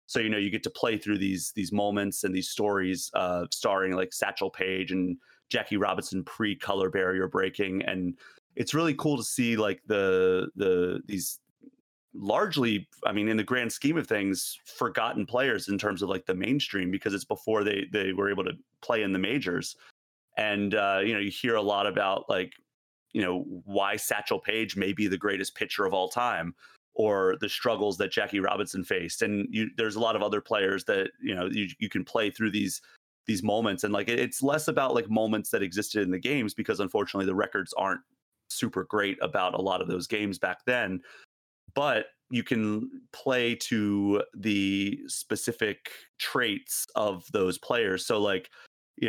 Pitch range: 95-115 Hz